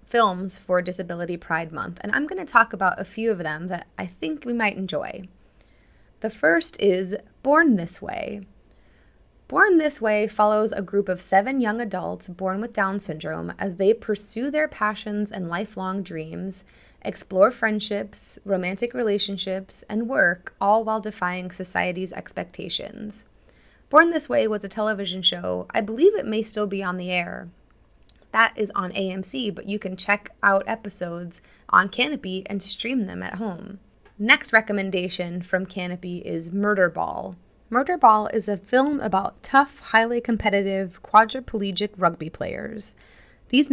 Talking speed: 150 wpm